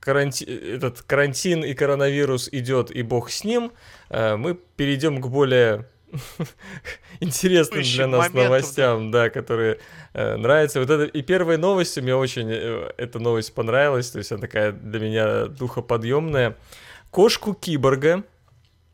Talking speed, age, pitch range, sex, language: 115 wpm, 20-39, 115-145 Hz, male, Russian